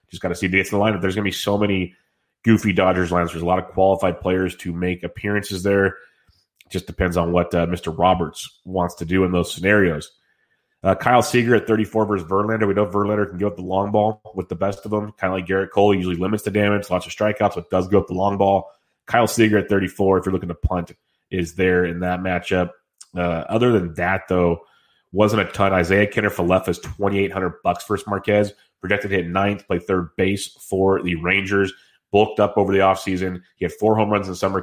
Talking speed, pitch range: 230 wpm, 90-100 Hz